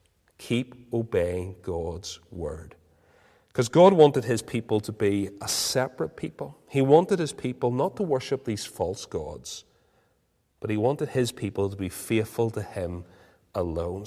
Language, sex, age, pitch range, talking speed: English, male, 40-59, 100-135 Hz, 150 wpm